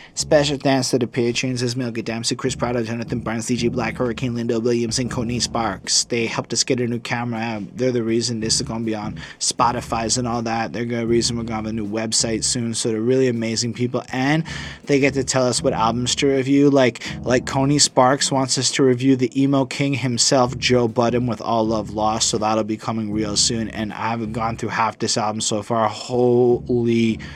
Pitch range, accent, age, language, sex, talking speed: 110-125 Hz, American, 20-39, English, male, 220 wpm